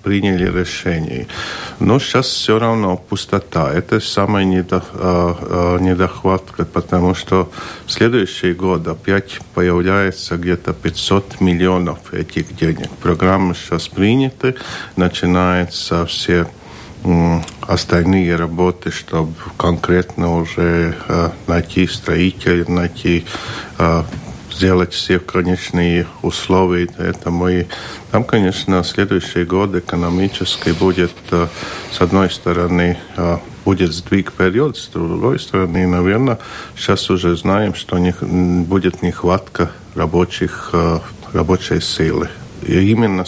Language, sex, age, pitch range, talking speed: Russian, male, 50-69, 85-95 Hz, 95 wpm